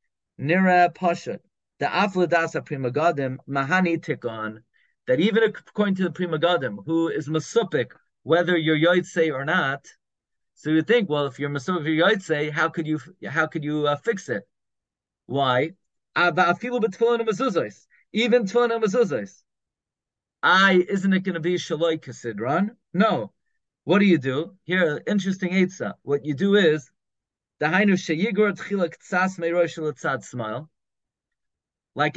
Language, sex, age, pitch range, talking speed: English, male, 30-49, 155-185 Hz, 115 wpm